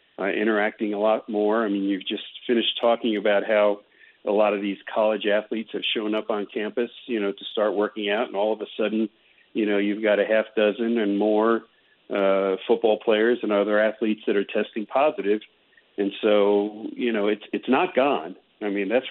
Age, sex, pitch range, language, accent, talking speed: 50-69, male, 100-115 Hz, English, American, 205 wpm